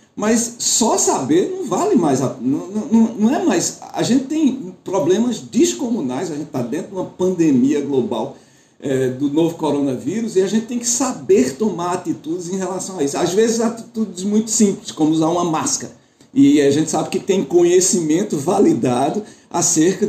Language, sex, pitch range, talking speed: Portuguese, male, 160-240 Hz, 170 wpm